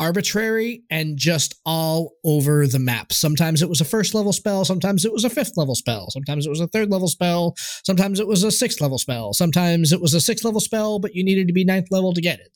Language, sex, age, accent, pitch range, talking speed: English, male, 20-39, American, 150-210 Hz, 270 wpm